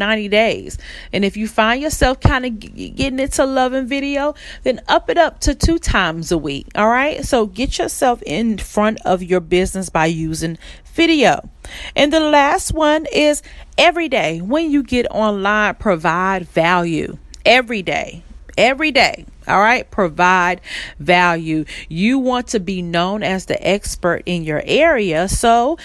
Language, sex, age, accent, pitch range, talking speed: English, female, 40-59, American, 180-255 Hz, 160 wpm